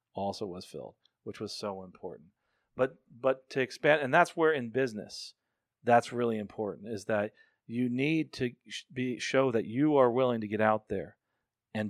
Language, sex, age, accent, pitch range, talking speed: English, male, 40-59, American, 110-130 Hz, 175 wpm